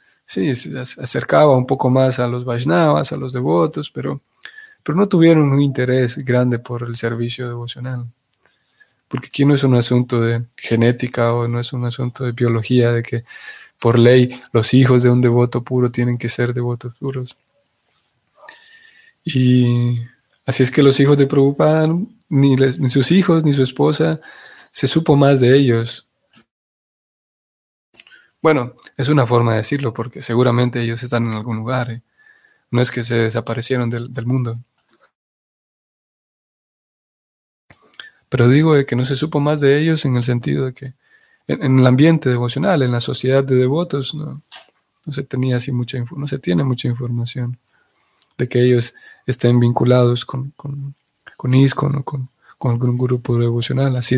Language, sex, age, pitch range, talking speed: Spanish, male, 20-39, 120-140 Hz, 165 wpm